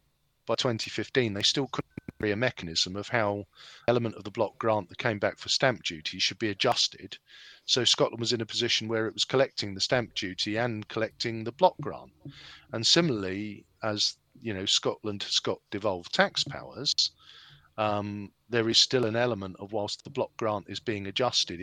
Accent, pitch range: British, 100-130 Hz